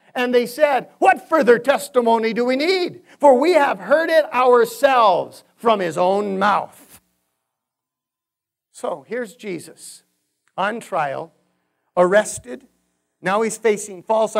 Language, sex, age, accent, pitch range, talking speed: English, male, 50-69, American, 185-275 Hz, 120 wpm